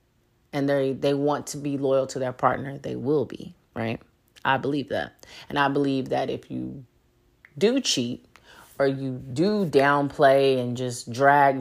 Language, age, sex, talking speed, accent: English, 30-49, female, 165 wpm, American